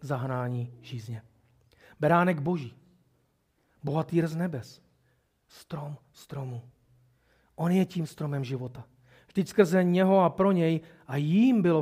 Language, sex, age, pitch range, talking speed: Czech, male, 40-59, 135-210 Hz, 115 wpm